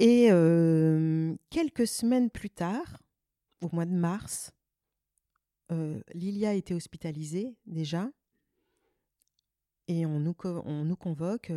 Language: French